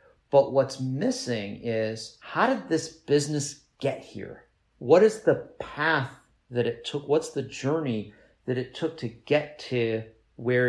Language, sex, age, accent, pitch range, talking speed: English, male, 50-69, American, 120-160 Hz, 150 wpm